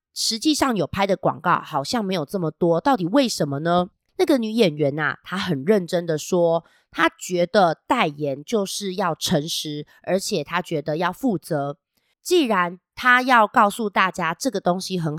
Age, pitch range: 30-49, 165-250 Hz